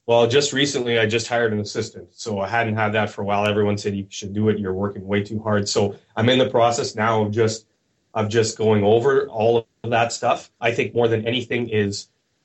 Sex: male